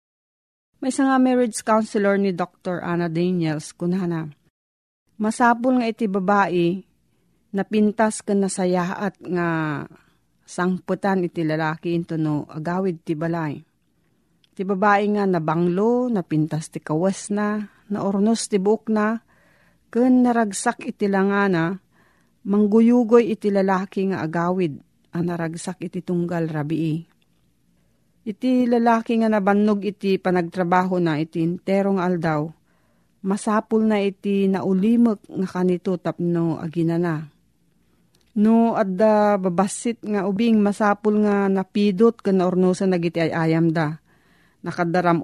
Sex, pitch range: female, 170-215 Hz